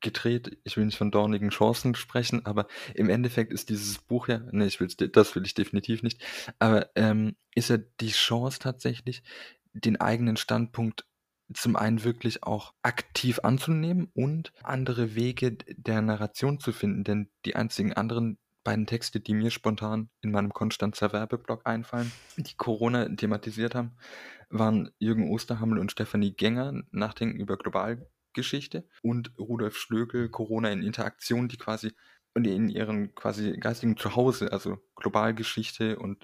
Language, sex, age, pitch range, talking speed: German, male, 20-39, 105-120 Hz, 150 wpm